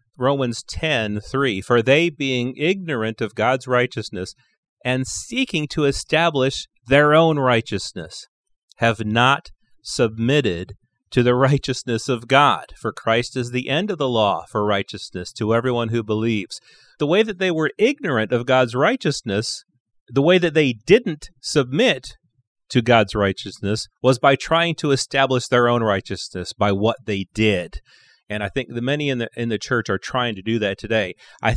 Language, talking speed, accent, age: English, 160 wpm, American, 40-59